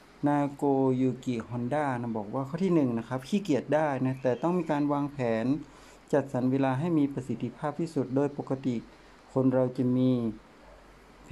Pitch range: 125-155 Hz